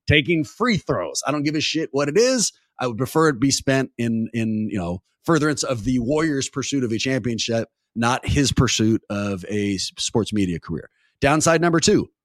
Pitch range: 130-185 Hz